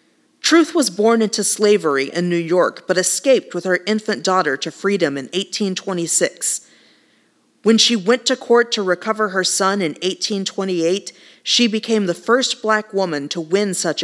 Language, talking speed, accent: English, 165 wpm, American